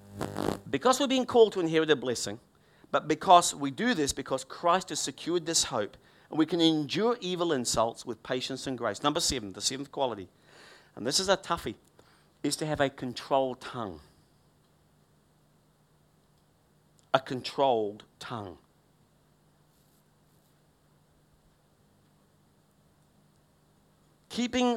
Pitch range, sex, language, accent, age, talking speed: 130-215 Hz, male, English, British, 50-69, 120 wpm